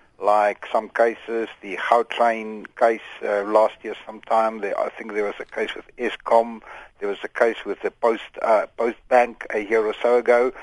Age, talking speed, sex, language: 60-79, 190 wpm, male, English